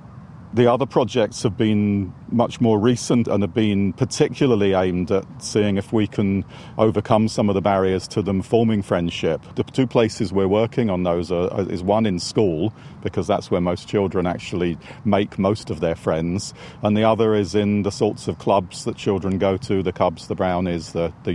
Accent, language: British, English